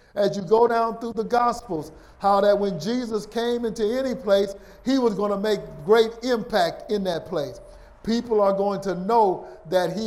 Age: 50-69